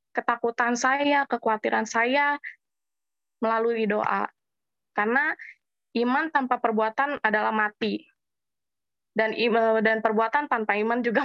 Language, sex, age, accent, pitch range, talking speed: Indonesian, female, 20-39, native, 225-275 Hz, 100 wpm